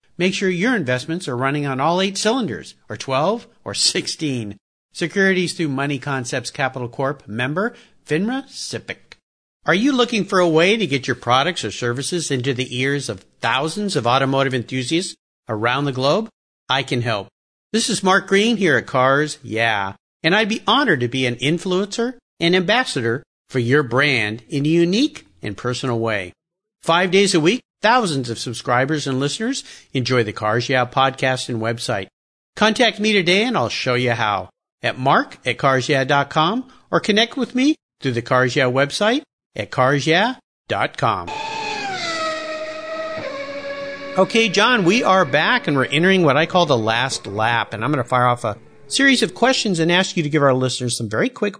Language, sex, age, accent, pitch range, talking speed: English, male, 50-69, American, 125-205 Hz, 175 wpm